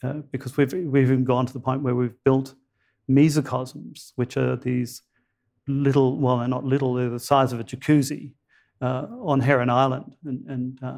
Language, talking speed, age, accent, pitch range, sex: English, 200 wpm, 50-69, British, 125-140 Hz, male